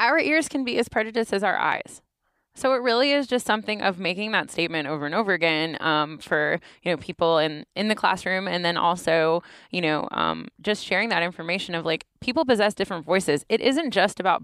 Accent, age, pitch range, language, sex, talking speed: American, 10-29, 165-215 Hz, English, female, 215 wpm